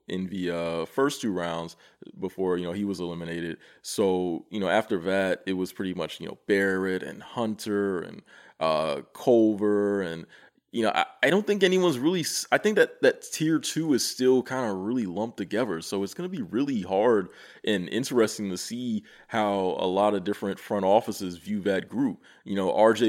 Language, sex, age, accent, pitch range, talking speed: English, male, 20-39, American, 95-110 Hz, 195 wpm